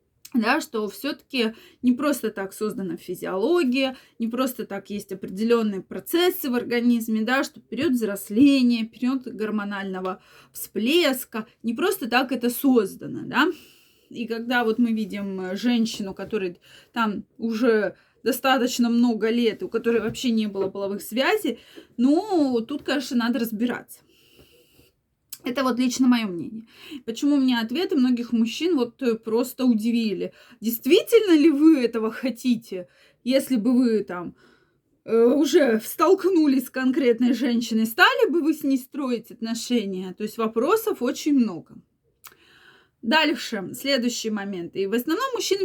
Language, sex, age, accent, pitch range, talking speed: Russian, female, 20-39, native, 225-275 Hz, 130 wpm